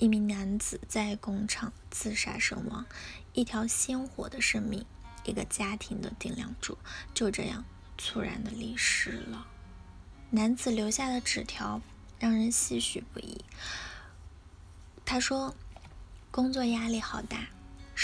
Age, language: 20-39, Chinese